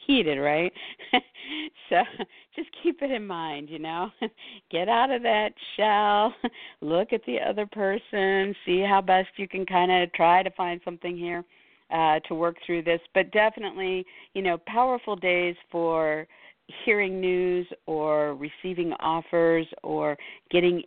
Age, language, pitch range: 50-69, English, 165-195 Hz